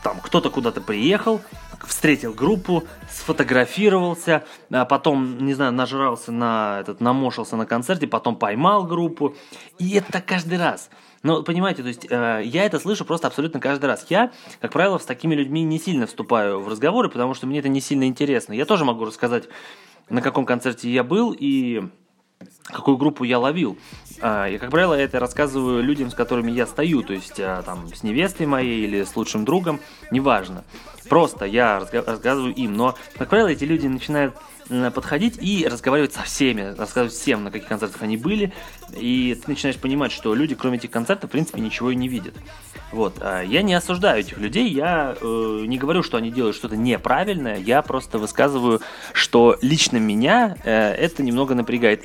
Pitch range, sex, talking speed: 115-160 Hz, male, 175 wpm